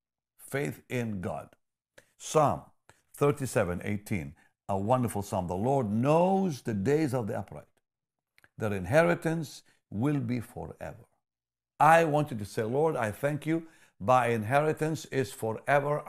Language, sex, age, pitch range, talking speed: English, male, 60-79, 110-160 Hz, 130 wpm